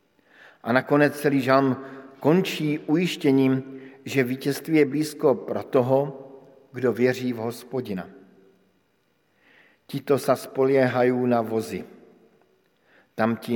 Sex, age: male, 50-69